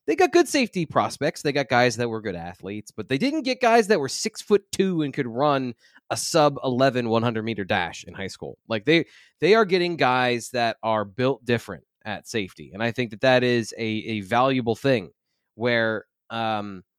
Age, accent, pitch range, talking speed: 20-39, American, 125-170 Hz, 205 wpm